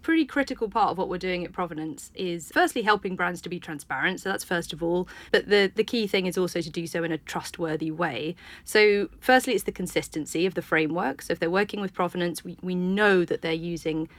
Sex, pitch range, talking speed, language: female, 175-235 Hz, 235 wpm, English